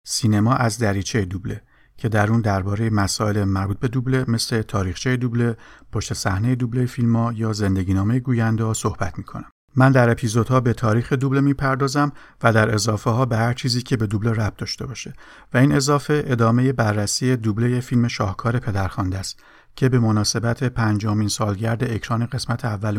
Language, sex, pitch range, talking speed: Persian, male, 105-130 Hz, 165 wpm